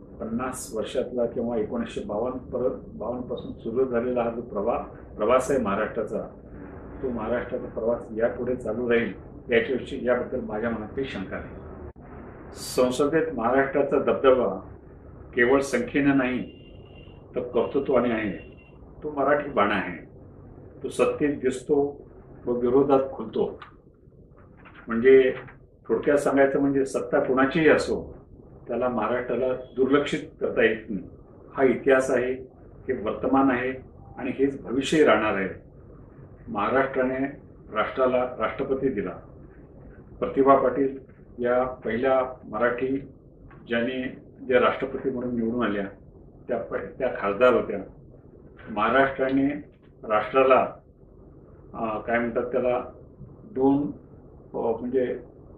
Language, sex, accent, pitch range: Marathi, male, native, 115-135 Hz